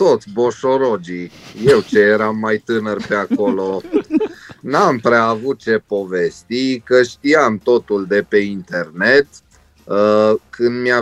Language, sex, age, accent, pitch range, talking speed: Romanian, male, 30-49, native, 105-140 Hz, 120 wpm